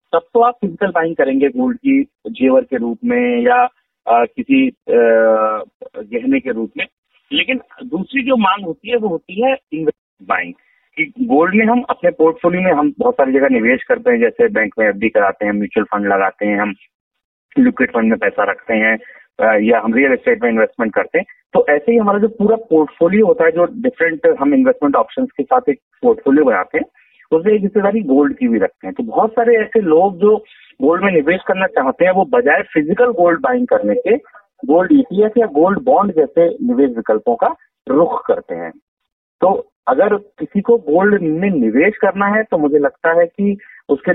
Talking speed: 195 wpm